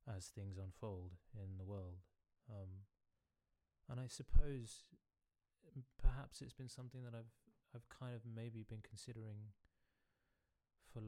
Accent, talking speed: British, 125 wpm